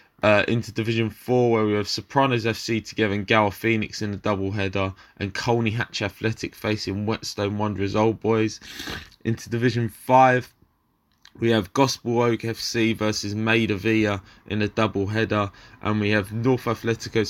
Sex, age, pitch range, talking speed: male, 20-39, 105-115 Hz, 155 wpm